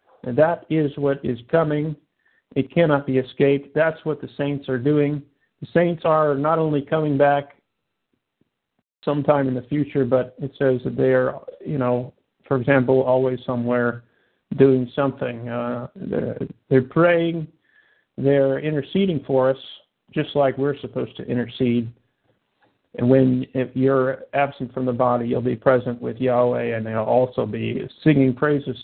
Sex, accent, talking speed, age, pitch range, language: male, American, 155 wpm, 50-69, 125-145 Hz, English